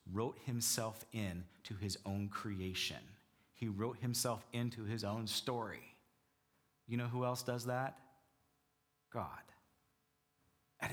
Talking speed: 120 wpm